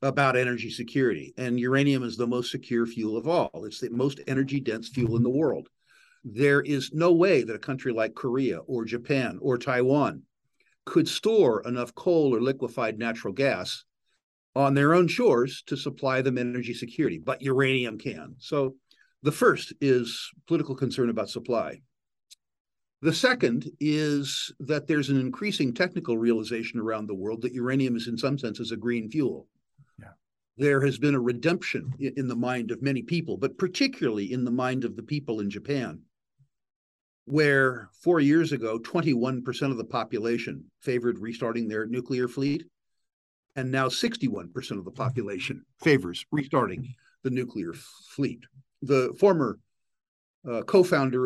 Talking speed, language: 155 wpm, English